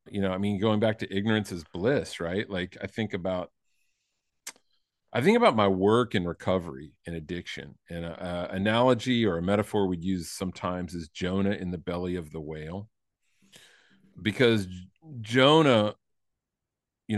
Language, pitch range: English, 90-110 Hz